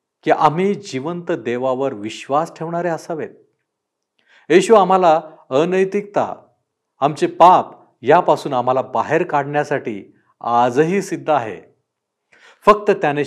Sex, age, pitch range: male, 50-69, 125-175 Hz